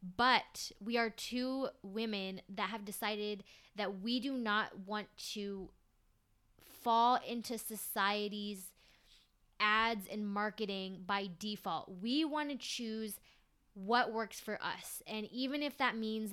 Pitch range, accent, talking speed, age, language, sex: 200-230 Hz, American, 130 wpm, 20-39, English, female